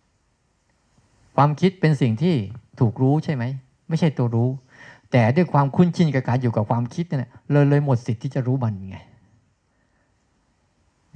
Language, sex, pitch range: Thai, male, 115-150 Hz